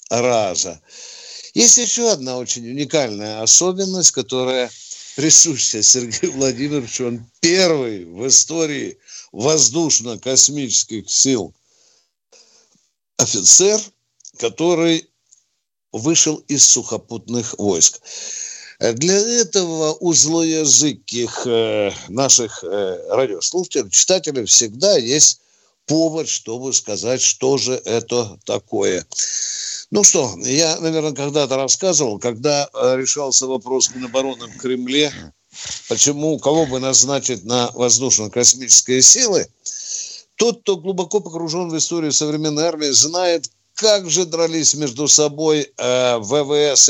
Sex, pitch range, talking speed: male, 125-165 Hz, 90 wpm